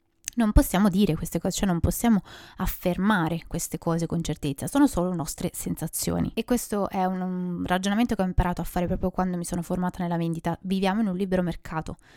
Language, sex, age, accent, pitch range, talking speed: Italian, female, 20-39, native, 180-215 Hz, 195 wpm